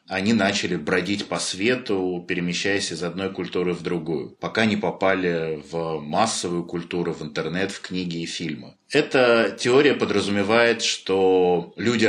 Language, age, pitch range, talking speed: Russian, 20-39, 90-110 Hz, 140 wpm